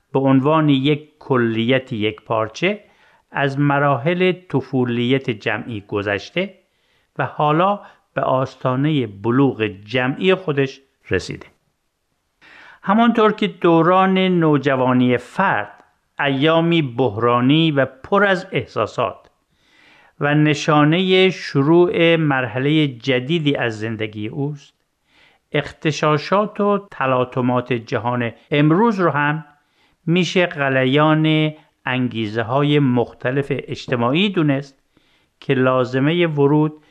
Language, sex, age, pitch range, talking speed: Persian, male, 50-69, 130-165 Hz, 90 wpm